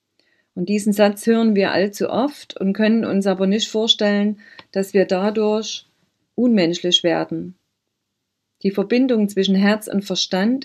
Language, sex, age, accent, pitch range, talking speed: German, female, 40-59, German, 180-210 Hz, 135 wpm